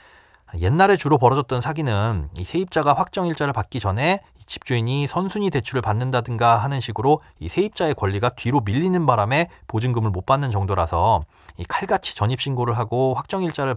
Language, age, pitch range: Korean, 30-49, 105-155 Hz